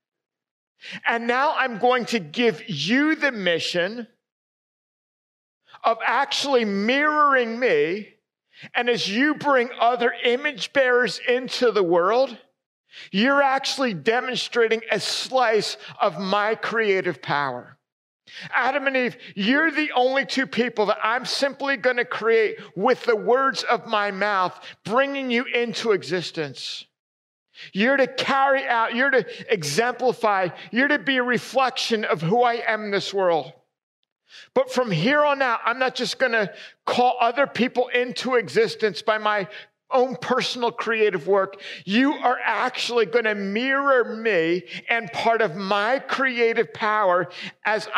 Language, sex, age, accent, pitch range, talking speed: English, male, 50-69, American, 215-260 Hz, 140 wpm